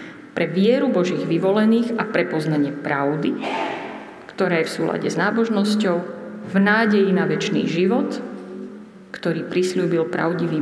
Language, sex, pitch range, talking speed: Slovak, female, 170-215 Hz, 125 wpm